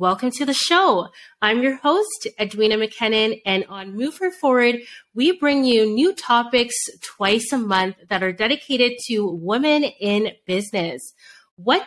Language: English